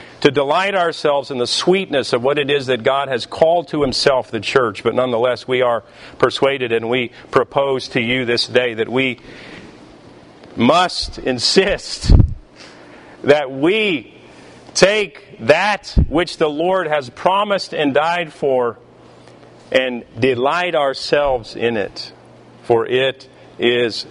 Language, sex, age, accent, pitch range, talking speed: English, male, 40-59, American, 125-155 Hz, 135 wpm